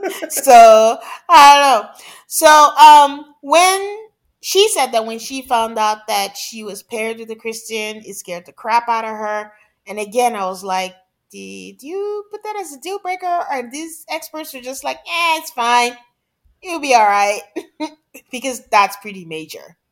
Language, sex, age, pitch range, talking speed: English, female, 30-49, 210-300 Hz, 180 wpm